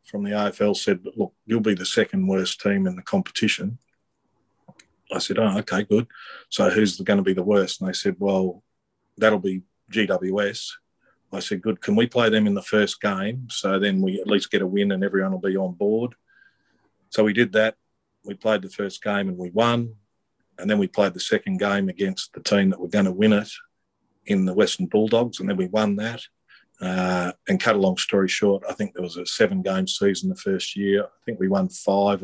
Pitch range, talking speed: 95-115 Hz, 220 wpm